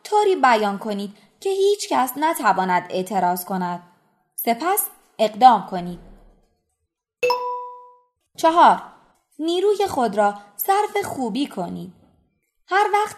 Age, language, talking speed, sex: 20-39, Persian, 95 wpm, female